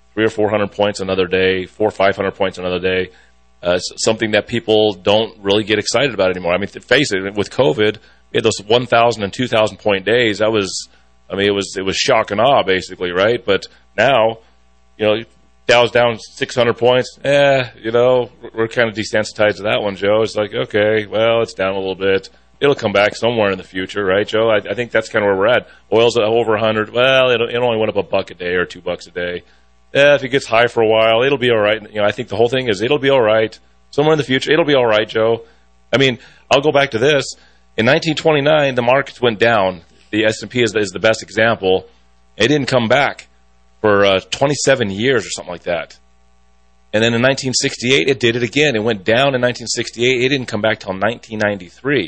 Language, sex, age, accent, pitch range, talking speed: English, male, 30-49, American, 95-120 Hz, 235 wpm